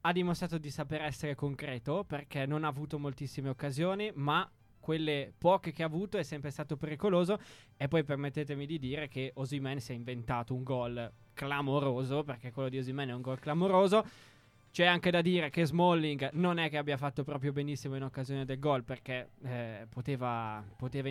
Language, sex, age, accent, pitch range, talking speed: Italian, male, 20-39, native, 140-185 Hz, 180 wpm